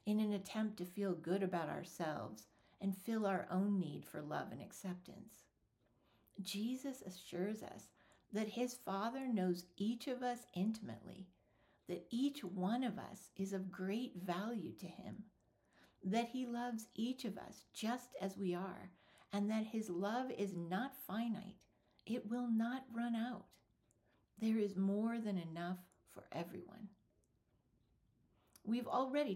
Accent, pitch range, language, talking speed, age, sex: American, 180-230 Hz, English, 145 wpm, 60-79, female